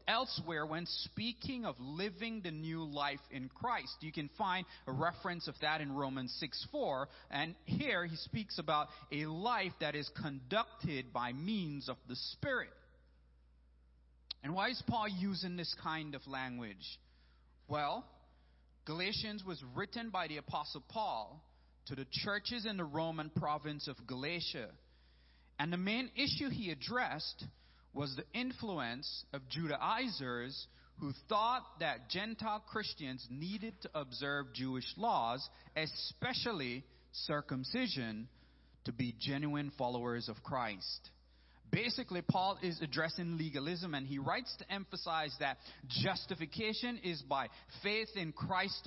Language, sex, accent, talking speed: English, male, American, 135 wpm